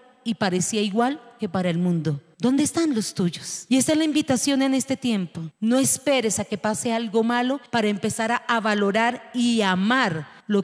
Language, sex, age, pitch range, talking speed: Spanish, female, 40-59, 220-295 Hz, 185 wpm